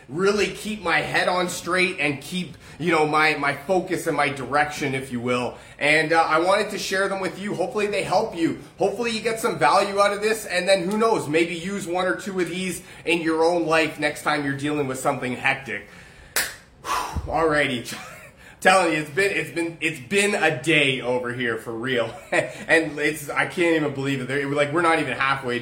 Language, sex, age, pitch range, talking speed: English, male, 30-49, 140-175 Hz, 210 wpm